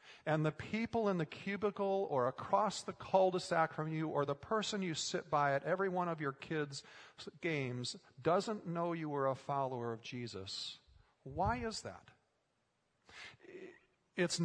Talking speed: 155 wpm